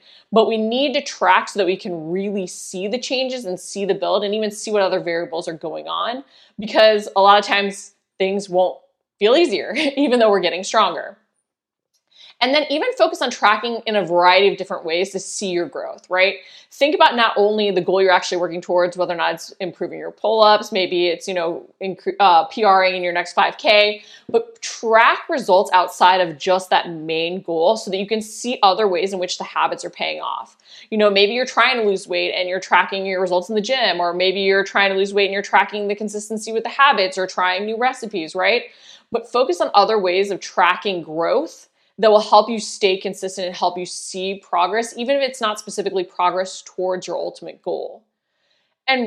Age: 20-39